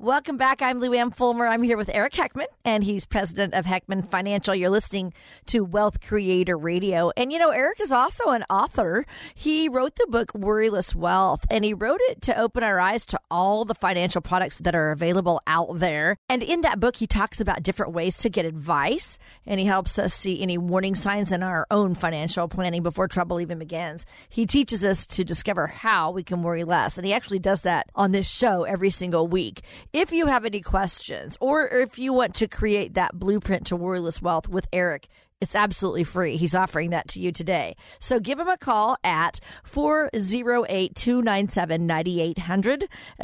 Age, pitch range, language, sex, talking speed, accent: 40-59, 180-235 Hz, English, female, 195 wpm, American